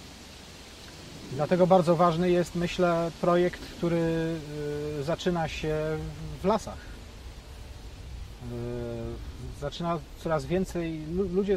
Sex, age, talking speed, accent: male, 40-59, 60 wpm, native